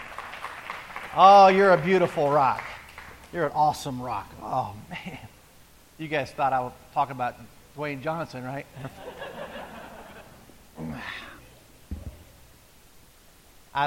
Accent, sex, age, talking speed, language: American, male, 40-59, 95 wpm, English